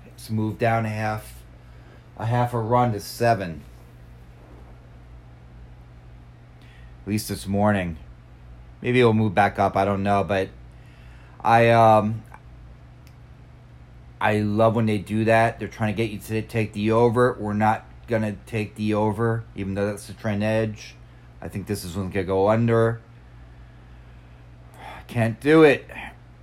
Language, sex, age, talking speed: English, male, 30-49, 145 wpm